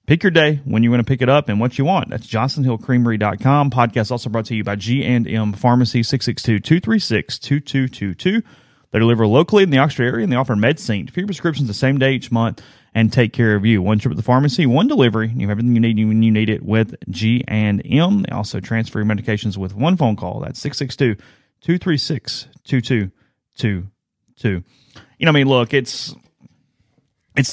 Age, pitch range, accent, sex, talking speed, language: 30-49, 105-135 Hz, American, male, 185 wpm, English